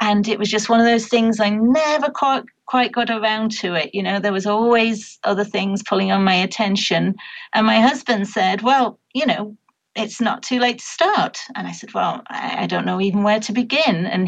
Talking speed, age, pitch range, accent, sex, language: 215 wpm, 40-59, 195-230 Hz, British, female, English